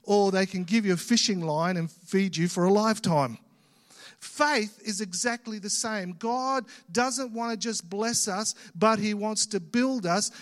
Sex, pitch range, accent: male, 175-230 Hz, Australian